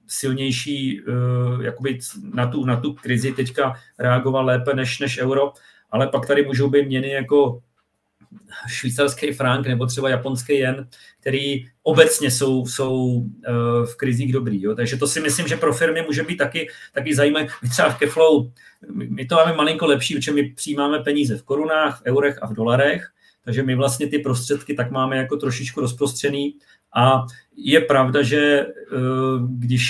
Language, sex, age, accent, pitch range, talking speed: Czech, male, 40-59, native, 130-150 Hz, 160 wpm